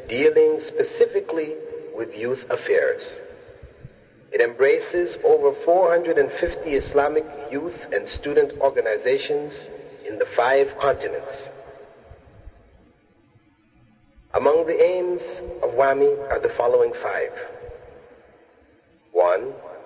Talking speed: 85 wpm